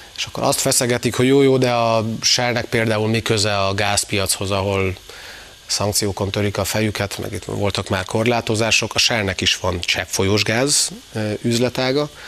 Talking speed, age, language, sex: 145 wpm, 30-49, Hungarian, male